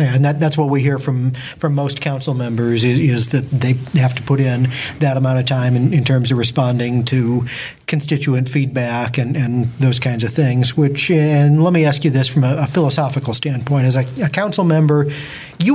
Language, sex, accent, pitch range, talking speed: English, male, American, 130-150 Hz, 210 wpm